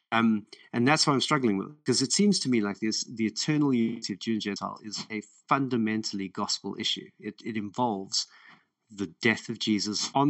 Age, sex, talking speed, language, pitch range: 30-49, male, 200 wpm, English, 105-125 Hz